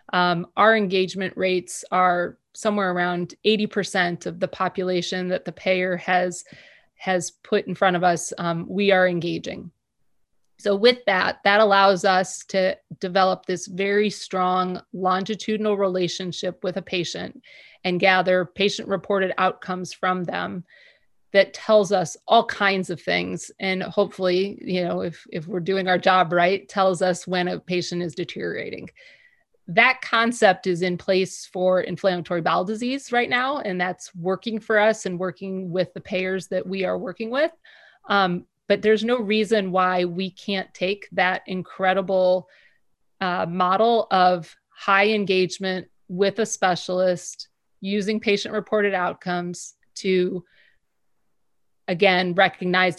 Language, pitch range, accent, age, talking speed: English, 180-200 Hz, American, 30-49, 140 wpm